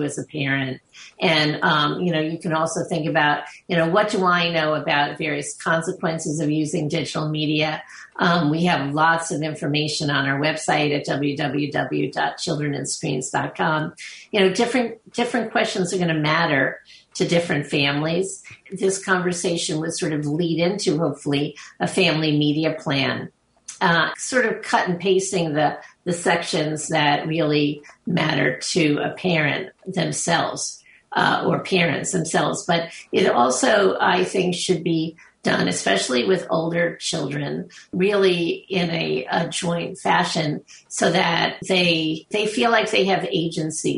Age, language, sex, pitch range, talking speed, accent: 50-69, English, female, 155-180 Hz, 145 wpm, American